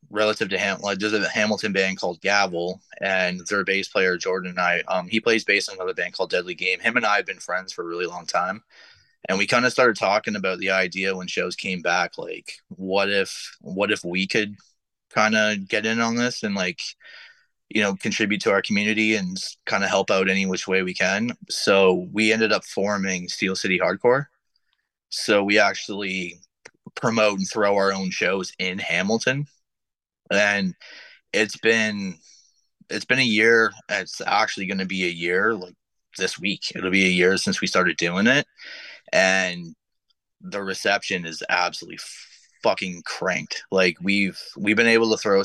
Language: English